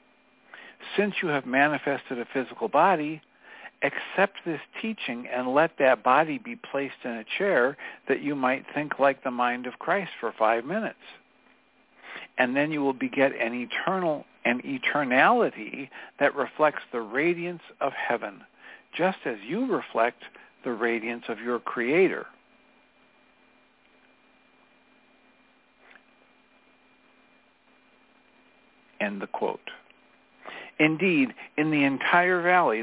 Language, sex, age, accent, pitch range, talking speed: English, male, 60-79, American, 125-170 Hz, 115 wpm